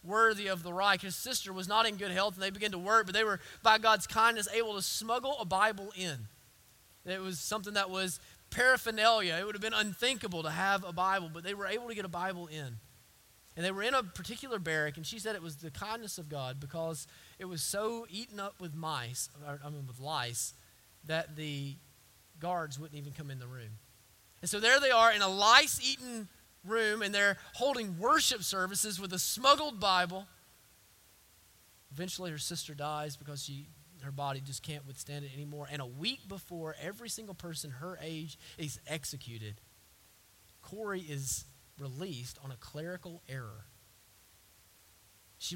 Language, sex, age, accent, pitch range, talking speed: English, male, 20-39, American, 130-200 Hz, 185 wpm